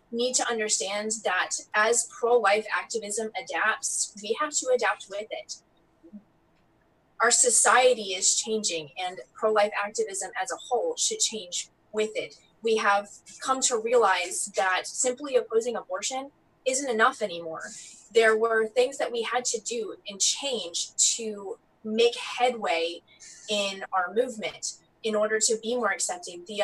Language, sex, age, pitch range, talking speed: English, female, 20-39, 200-250 Hz, 140 wpm